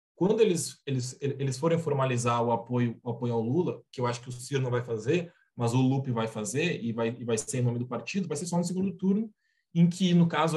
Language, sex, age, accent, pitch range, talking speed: Portuguese, male, 20-39, Brazilian, 125-155 Hz, 260 wpm